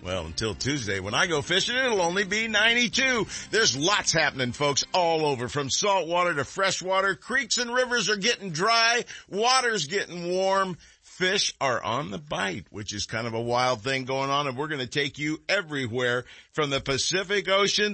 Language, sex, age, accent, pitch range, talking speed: English, male, 50-69, American, 125-190 Hz, 185 wpm